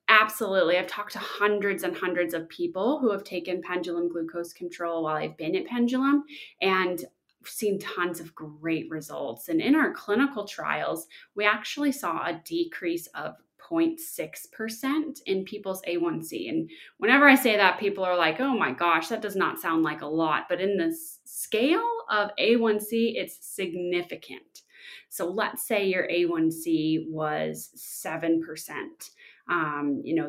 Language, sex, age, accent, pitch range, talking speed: English, female, 20-39, American, 170-275 Hz, 155 wpm